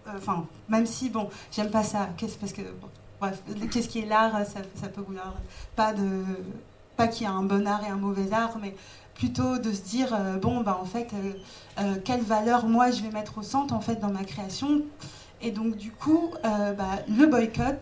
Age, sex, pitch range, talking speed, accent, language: 30-49, female, 190-225 Hz, 210 wpm, French, French